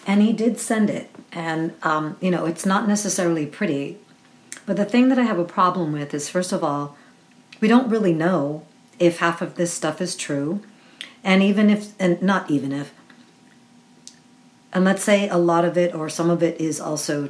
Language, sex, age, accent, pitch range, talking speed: English, female, 50-69, American, 165-210 Hz, 200 wpm